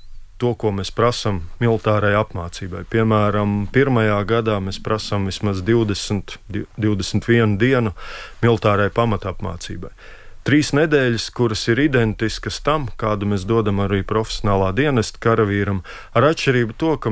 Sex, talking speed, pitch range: male, 125 wpm, 100-115 Hz